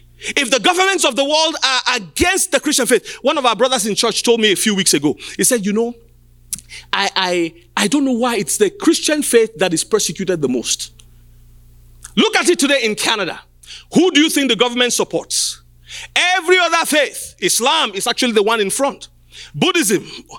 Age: 40-59